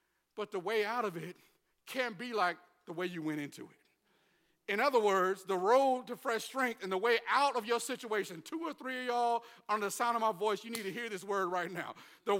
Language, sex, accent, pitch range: English, male, American, 240-305 Hz